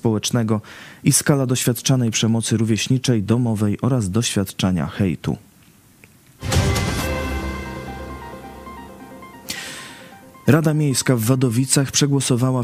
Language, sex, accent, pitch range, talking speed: Polish, male, native, 100-130 Hz, 70 wpm